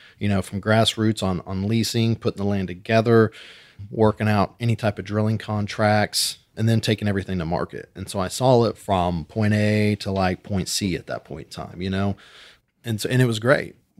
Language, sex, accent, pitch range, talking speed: English, male, American, 100-115 Hz, 210 wpm